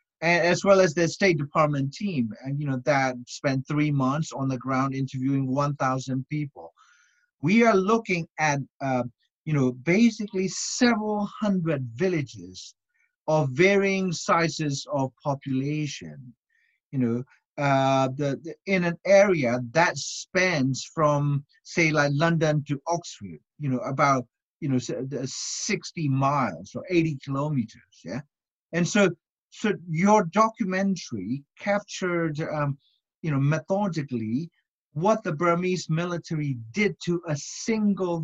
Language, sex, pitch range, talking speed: English, male, 140-190 Hz, 130 wpm